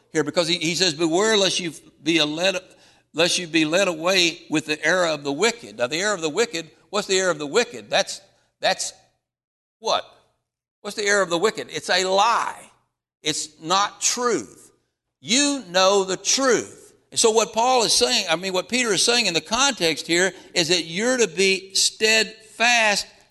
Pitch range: 160-220 Hz